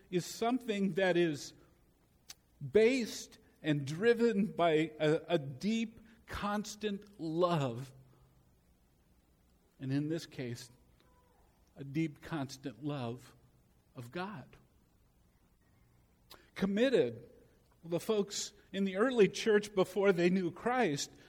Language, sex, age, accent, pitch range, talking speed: English, male, 50-69, American, 140-195 Hz, 95 wpm